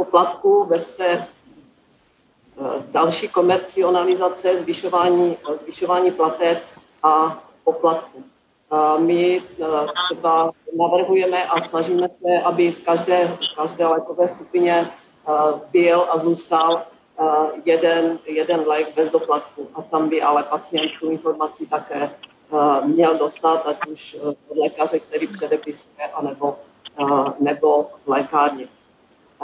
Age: 40-59